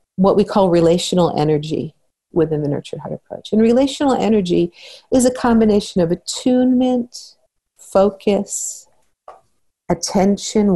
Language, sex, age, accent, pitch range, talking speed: English, female, 50-69, American, 165-210 Hz, 110 wpm